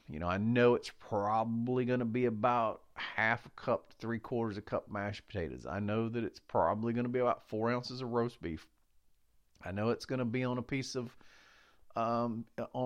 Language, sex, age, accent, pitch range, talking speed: English, male, 40-59, American, 95-130 Hz, 210 wpm